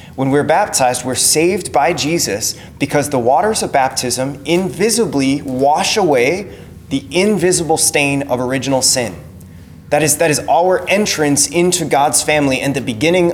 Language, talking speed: English, 145 wpm